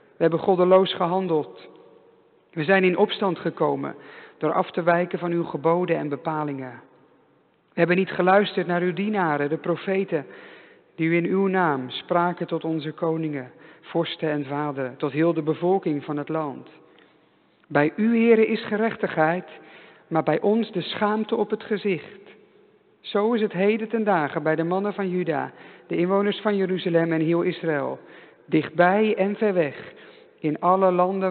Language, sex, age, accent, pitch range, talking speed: English, male, 50-69, Dutch, 155-190 Hz, 160 wpm